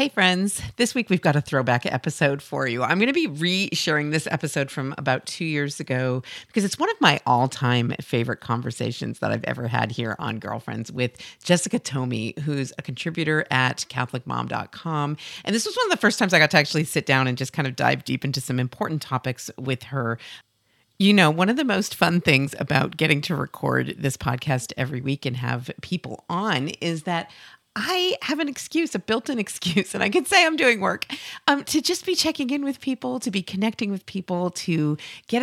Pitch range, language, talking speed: 130-190 Hz, English, 210 wpm